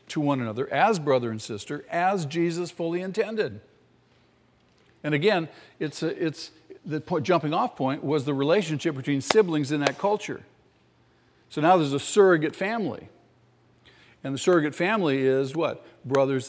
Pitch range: 130-165 Hz